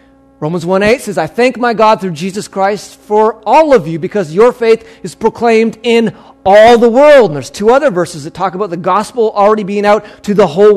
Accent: American